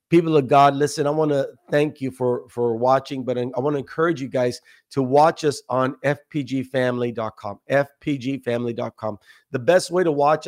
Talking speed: 180 wpm